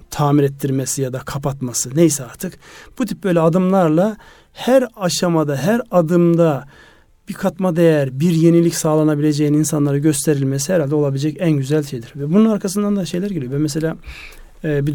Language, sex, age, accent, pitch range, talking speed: Turkish, male, 40-59, native, 145-180 Hz, 150 wpm